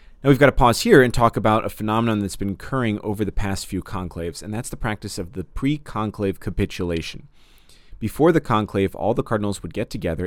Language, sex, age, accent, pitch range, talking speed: English, male, 30-49, American, 90-110 Hz, 210 wpm